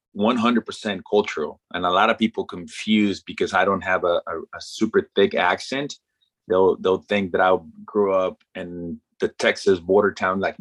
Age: 30-49